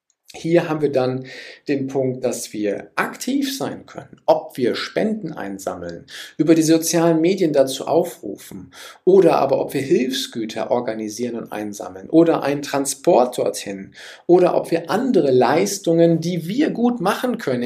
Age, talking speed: 50-69, 145 wpm